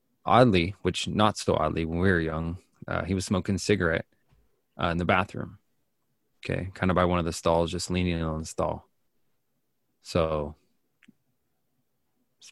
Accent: American